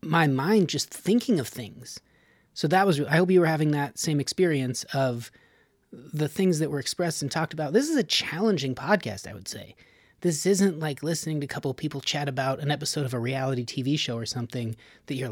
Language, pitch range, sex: English, 125-165 Hz, male